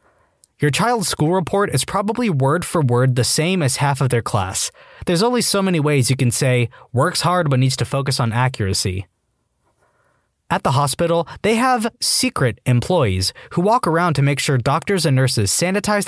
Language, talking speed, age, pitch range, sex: English, 185 wpm, 20-39, 125-180 Hz, male